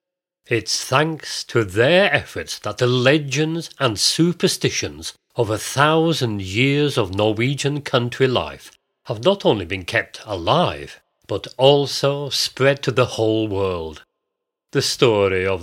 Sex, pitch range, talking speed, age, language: male, 100-135 Hz, 130 wpm, 40-59, English